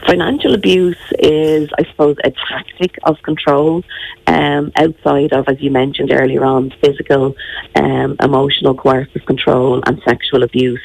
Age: 30-49